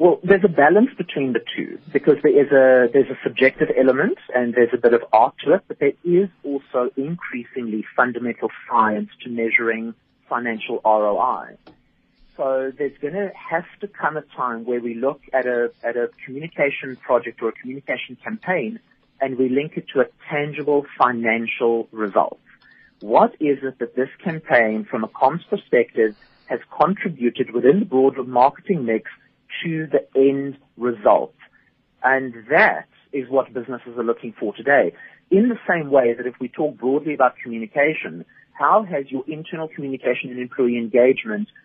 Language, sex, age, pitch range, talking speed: English, male, 40-59, 125-155 Hz, 165 wpm